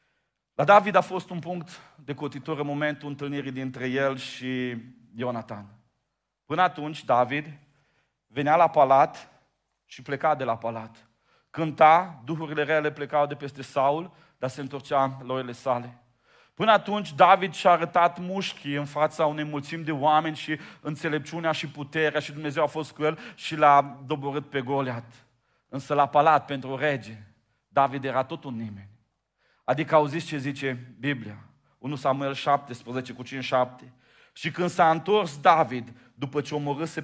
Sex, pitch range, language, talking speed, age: male, 130-160 Hz, Romanian, 155 wpm, 40-59